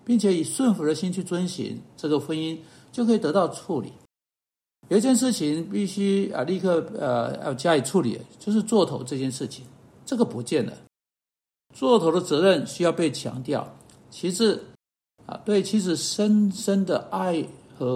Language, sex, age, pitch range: Chinese, male, 60-79, 145-205 Hz